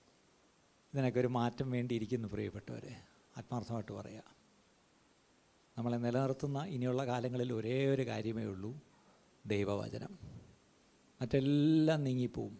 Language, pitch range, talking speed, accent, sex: Malayalam, 120-185 Hz, 85 wpm, native, male